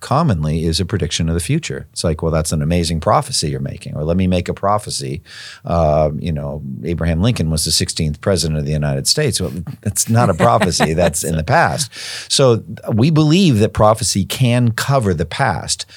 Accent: American